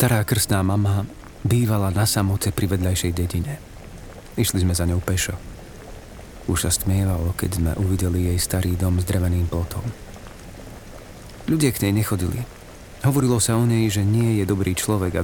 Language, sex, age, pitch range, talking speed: Slovak, male, 40-59, 90-105 Hz, 160 wpm